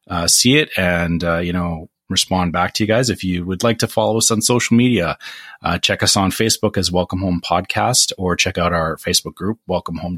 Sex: male